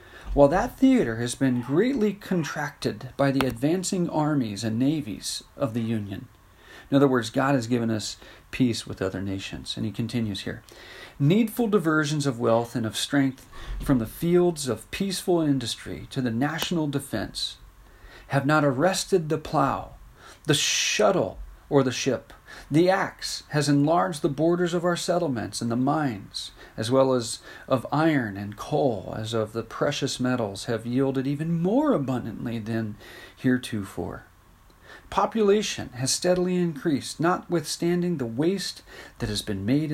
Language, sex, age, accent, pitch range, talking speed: English, male, 40-59, American, 110-155 Hz, 150 wpm